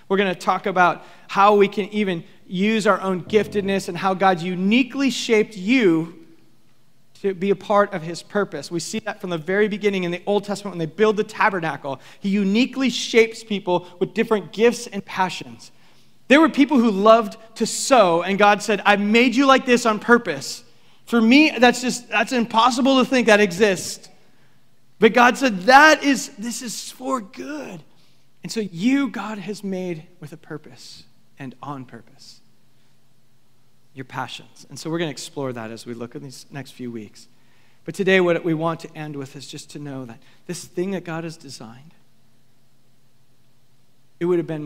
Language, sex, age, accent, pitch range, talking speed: English, male, 30-49, American, 130-210 Hz, 185 wpm